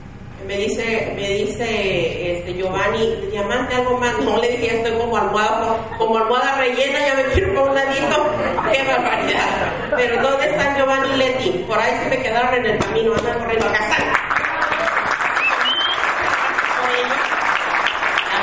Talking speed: 145 wpm